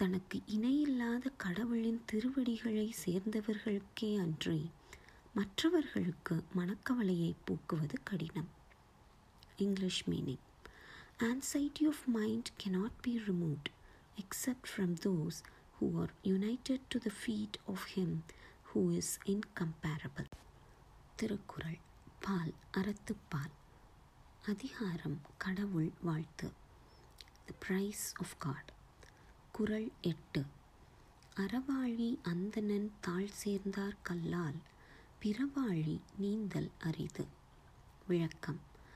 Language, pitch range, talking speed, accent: Tamil, 175-230 Hz, 85 wpm, native